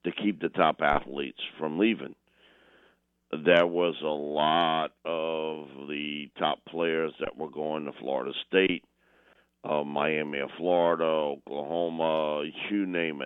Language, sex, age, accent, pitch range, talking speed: English, male, 50-69, American, 75-105 Hz, 125 wpm